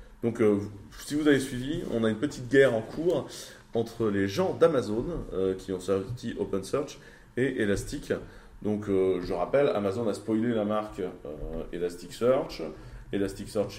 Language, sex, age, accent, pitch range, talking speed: French, male, 30-49, French, 95-115 Hz, 155 wpm